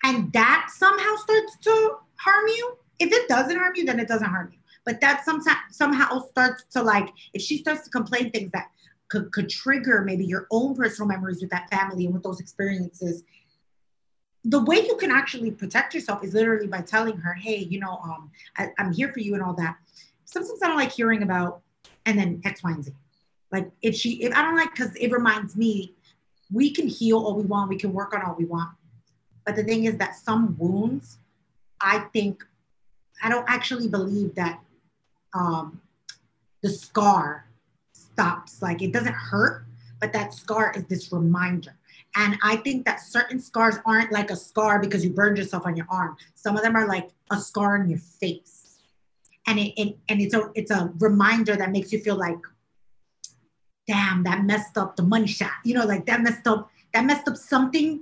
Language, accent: English, American